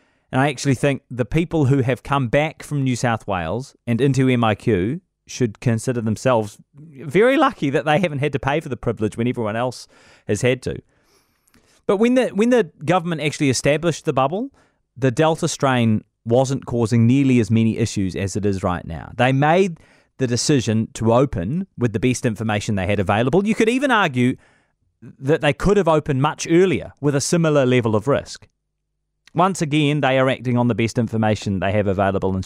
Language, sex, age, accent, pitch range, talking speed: English, male, 30-49, Australian, 110-145 Hz, 190 wpm